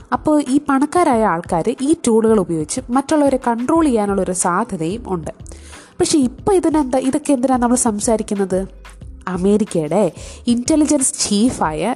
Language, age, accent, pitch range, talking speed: Malayalam, 20-39, native, 190-250 Hz, 105 wpm